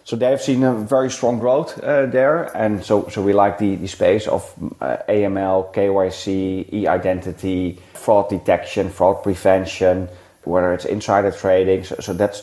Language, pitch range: English, 95-110 Hz